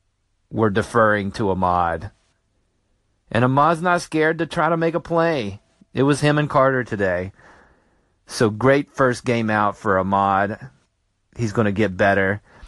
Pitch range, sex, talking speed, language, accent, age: 100-130 Hz, male, 155 wpm, English, American, 40-59